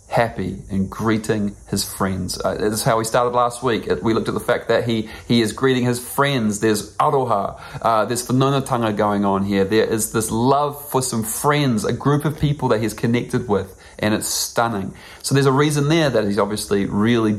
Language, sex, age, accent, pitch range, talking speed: English, male, 30-49, Australian, 100-140 Hz, 205 wpm